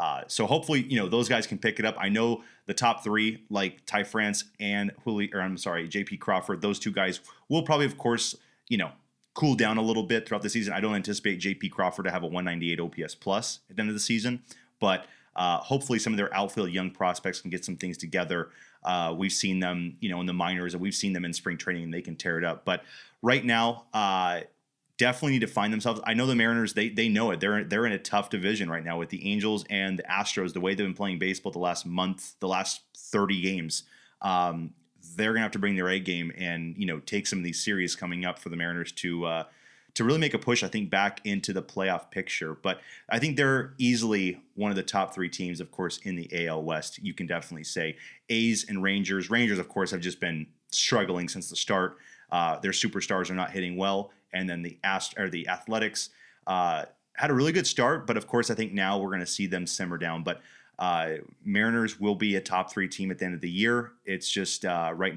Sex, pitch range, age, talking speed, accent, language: male, 90-110 Hz, 30-49, 240 wpm, American, English